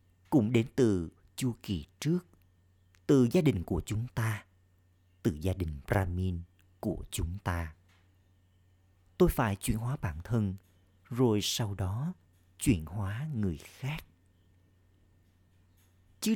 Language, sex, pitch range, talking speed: Vietnamese, male, 90-105 Hz, 120 wpm